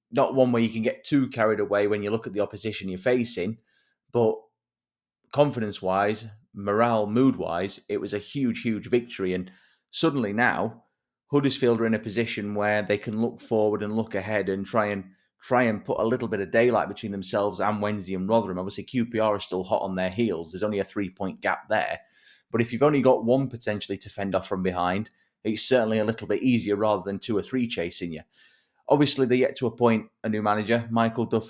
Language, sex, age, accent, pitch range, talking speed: English, male, 30-49, British, 95-115 Hz, 210 wpm